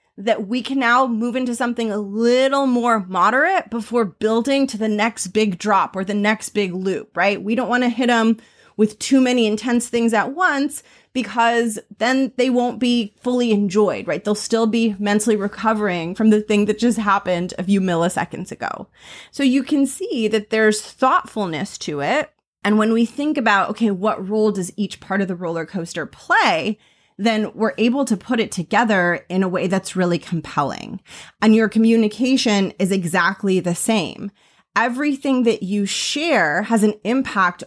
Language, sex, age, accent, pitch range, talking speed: English, female, 30-49, American, 200-245 Hz, 180 wpm